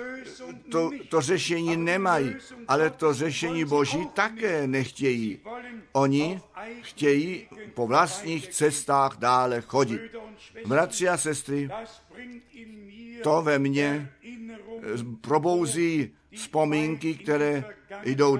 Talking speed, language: 90 wpm, Czech